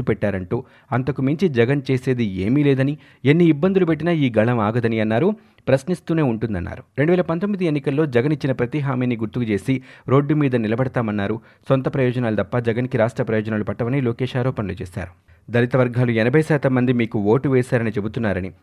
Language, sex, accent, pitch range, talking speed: Telugu, male, native, 115-145 Hz, 155 wpm